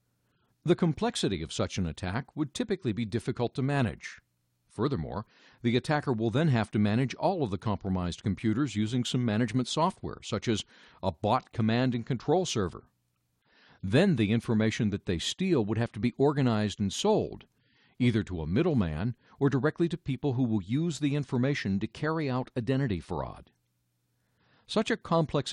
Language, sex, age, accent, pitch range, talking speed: English, male, 50-69, American, 95-150 Hz, 165 wpm